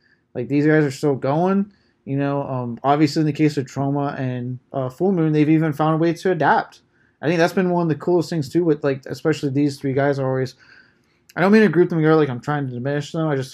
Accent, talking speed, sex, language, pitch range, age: American, 260 wpm, male, English, 130-155 Hz, 20-39